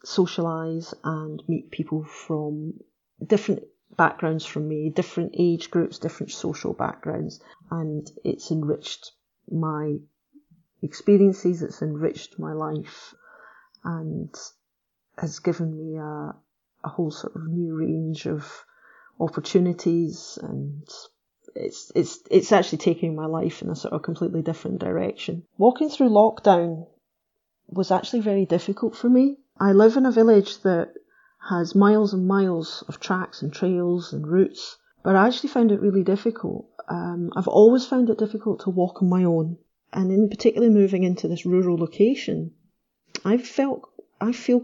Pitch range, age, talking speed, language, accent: 165-215 Hz, 40-59, 145 wpm, English, British